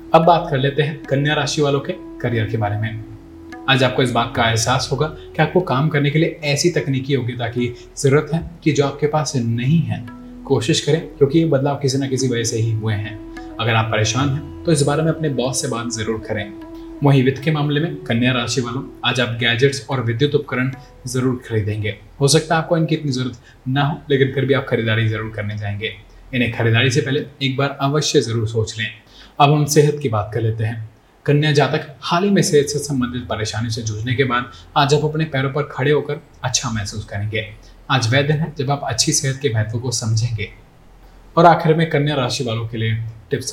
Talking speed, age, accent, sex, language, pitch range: 225 wpm, 20-39, native, male, Hindi, 110-145 Hz